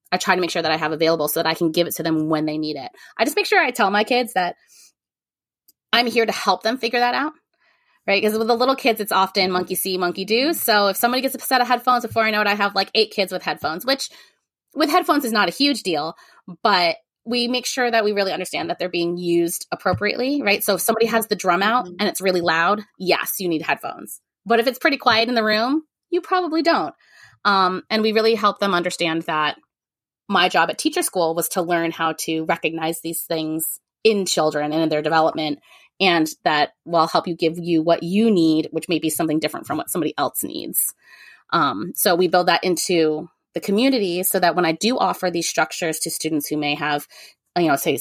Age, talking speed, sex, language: 20-39, 235 wpm, female, English